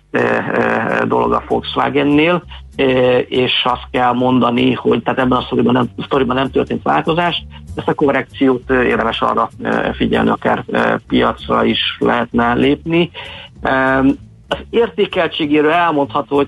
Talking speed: 110 wpm